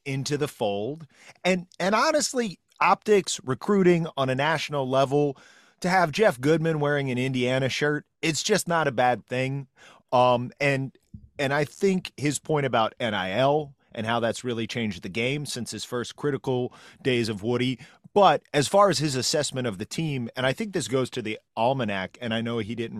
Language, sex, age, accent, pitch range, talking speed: English, male, 30-49, American, 110-145 Hz, 185 wpm